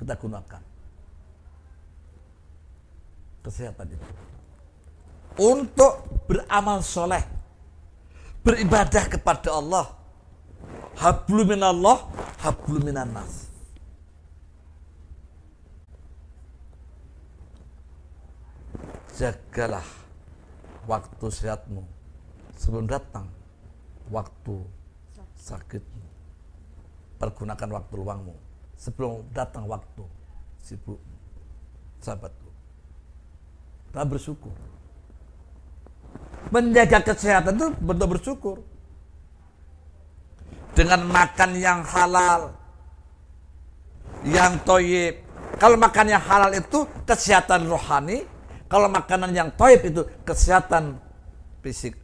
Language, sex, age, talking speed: Indonesian, male, 50-69, 65 wpm